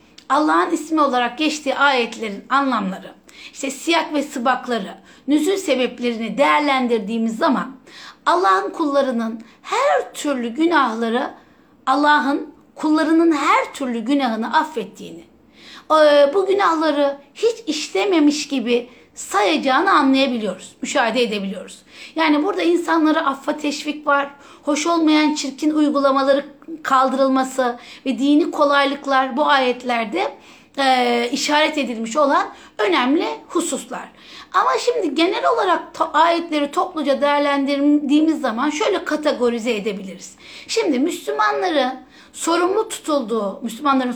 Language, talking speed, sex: Turkish, 100 wpm, female